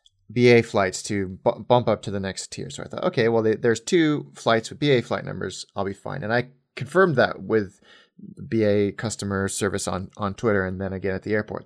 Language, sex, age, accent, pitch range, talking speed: English, male, 30-49, American, 100-130 Hz, 210 wpm